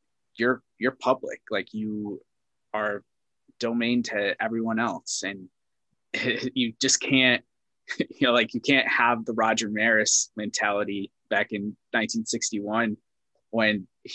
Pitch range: 105-125 Hz